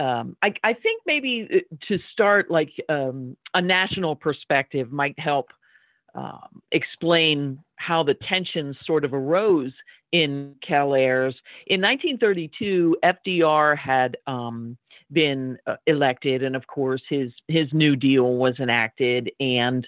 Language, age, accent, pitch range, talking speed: English, 50-69, American, 135-180 Hz, 125 wpm